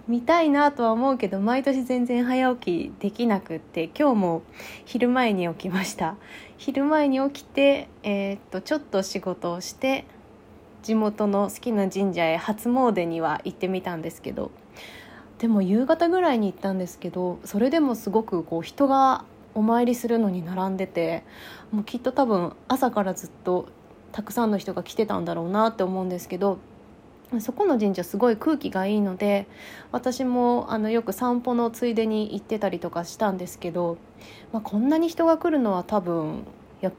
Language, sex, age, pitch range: Japanese, female, 20-39, 185-245 Hz